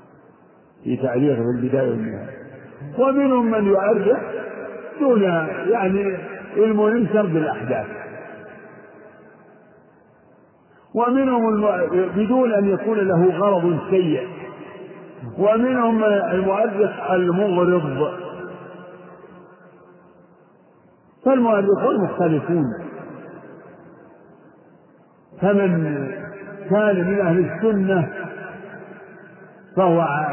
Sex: male